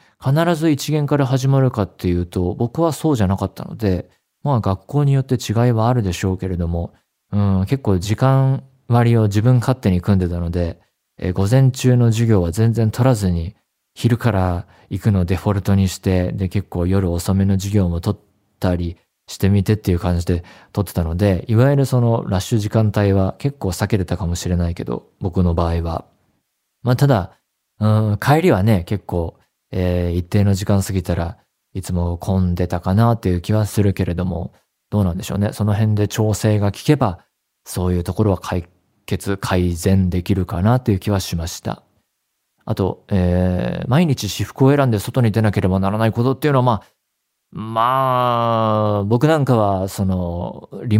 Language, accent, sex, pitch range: Japanese, native, male, 90-115 Hz